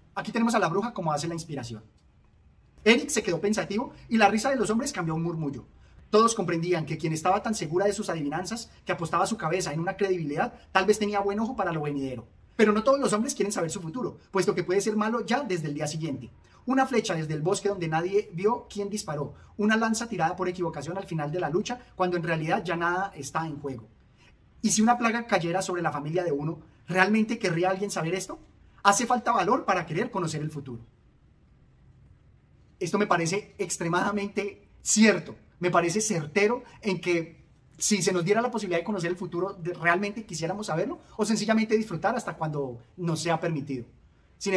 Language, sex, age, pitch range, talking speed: Spanish, male, 30-49, 160-210 Hz, 200 wpm